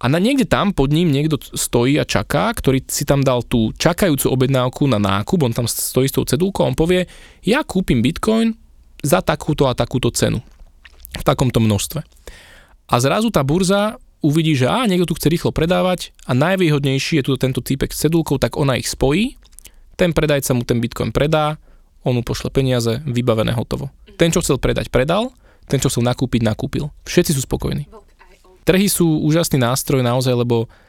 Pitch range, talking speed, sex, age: 120-155 Hz, 185 wpm, male, 20-39